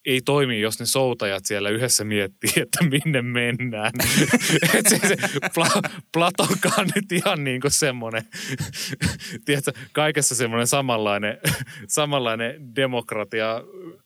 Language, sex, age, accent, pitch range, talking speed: Finnish, male, 30-49, native, 105-145 Hz, 100 wpm